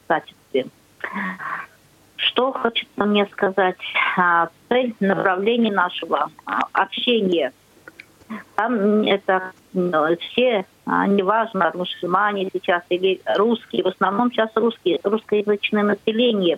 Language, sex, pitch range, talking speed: Russian, female, 185-225 Hz, 85 wpm